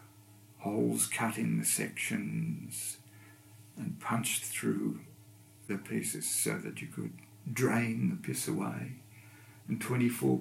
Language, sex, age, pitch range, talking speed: English, male, 50-69, 100-125 Hz, 115 wpm